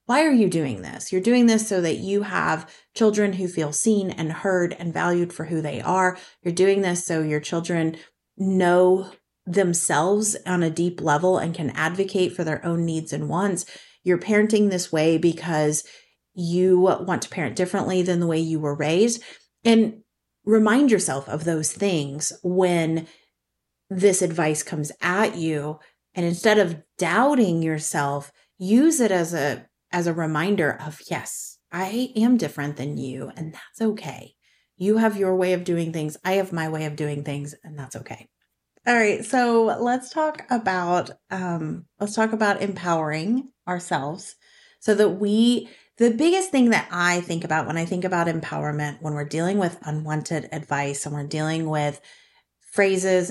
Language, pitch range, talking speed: English, 155-200 Hz, 170 wpm